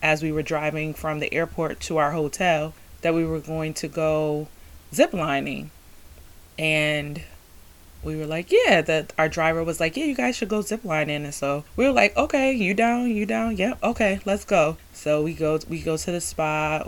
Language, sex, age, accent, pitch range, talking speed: English, female, 20-39, American, 150-195 Hz, 205 wpm